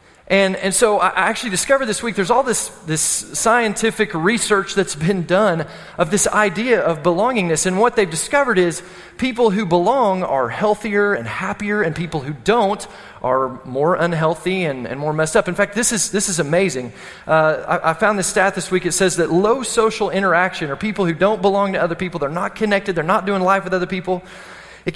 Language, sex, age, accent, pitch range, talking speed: English, male, 30-49, American, 170-210 Hz, 205 wpm